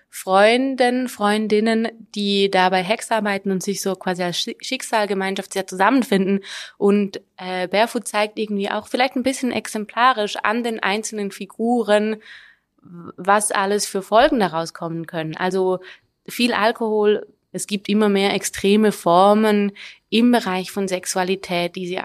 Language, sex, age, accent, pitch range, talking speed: German, female, 20-39, German, 185-220 Hz, 140 wpm